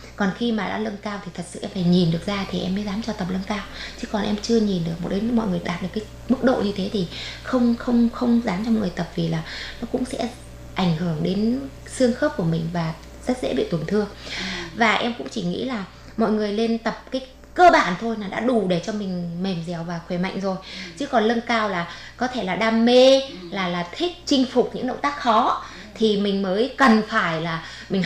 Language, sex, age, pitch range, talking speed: Vietnamese, female, 20-39, 180-235 Hz, 250 wpm